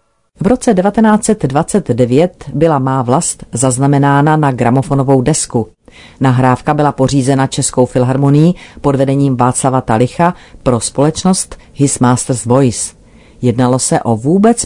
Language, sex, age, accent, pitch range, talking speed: Czech, female, 40-59, native, 125-150 Hz, 115 wpm